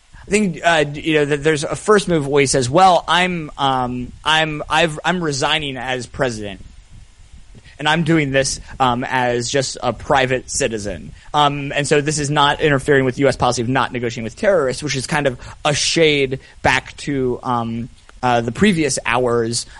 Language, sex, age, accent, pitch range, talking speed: English, male, 30-49, American, 125-155 Hz, 180 wpm